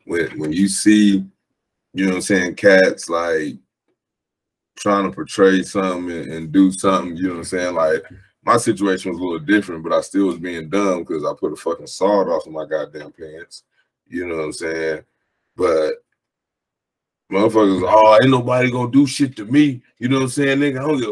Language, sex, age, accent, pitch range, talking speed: English, male, 20-39, American, 100-130 Hz, 205 wpm